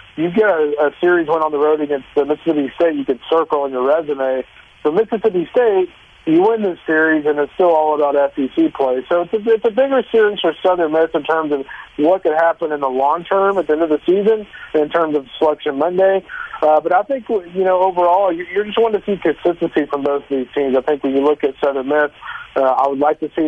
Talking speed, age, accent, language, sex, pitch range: 245 wpm, 40-59, American, English, male, 145-175 Hz